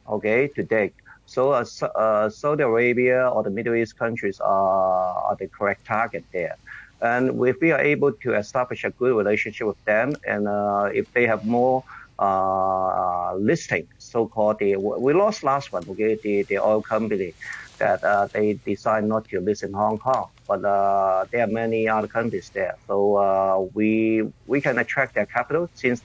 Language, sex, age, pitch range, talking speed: English, male, 50-69, 105-135 Hz, 175 wpm